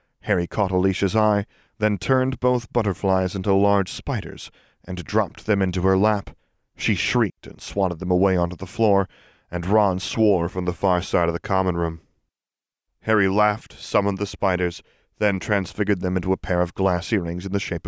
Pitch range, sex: 90-105 Hz, male